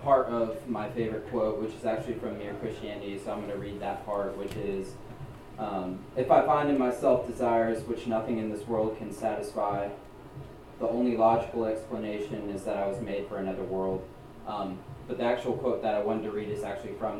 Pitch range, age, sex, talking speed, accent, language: 105-125 Hz, 20-39, male, 205 wpm, American, English